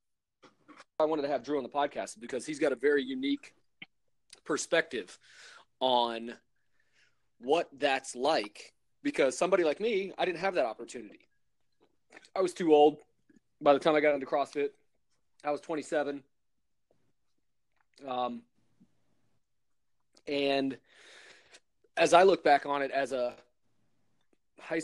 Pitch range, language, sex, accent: 130-160 Hz, English, male, American